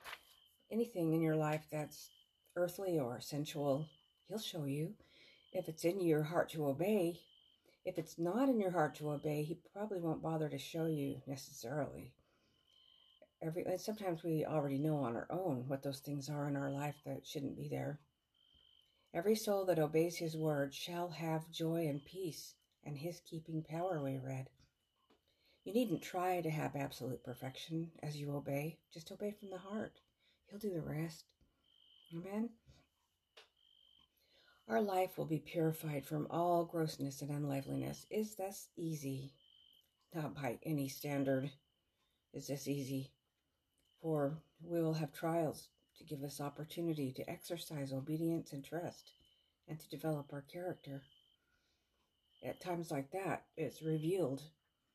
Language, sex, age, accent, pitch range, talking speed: English, female, 50-69, American, 140-170 Hz, 150 wpm